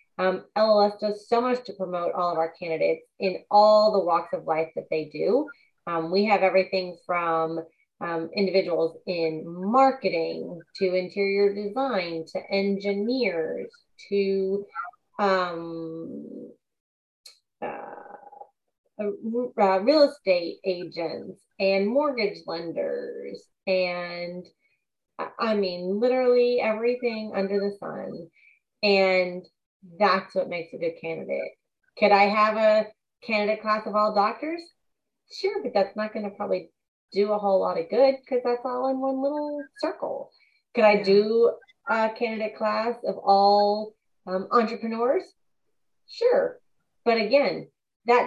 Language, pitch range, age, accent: English, 185-245 Hz, 30-49, American